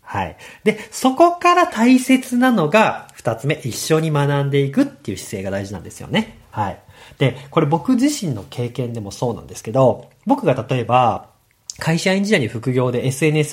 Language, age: Japanese, 40-59